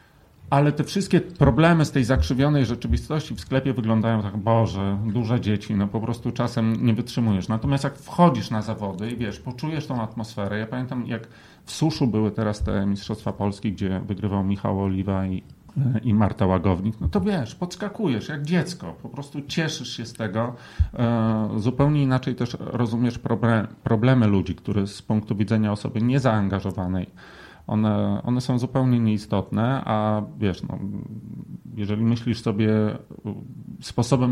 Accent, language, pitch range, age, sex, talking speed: native, Polish, 105-130 Hz, 40-59, male, 150 wpm